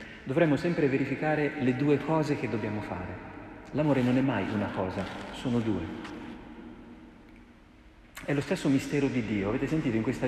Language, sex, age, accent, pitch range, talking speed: Italian, male, 40-59, native, 110-140 Hz, 160 wpm